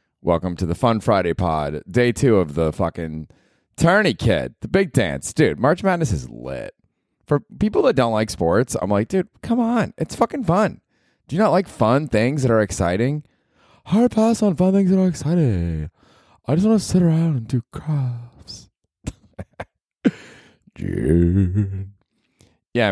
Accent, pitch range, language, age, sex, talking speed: American, 85-125 Hz, English, 20-39, male, 165 wpm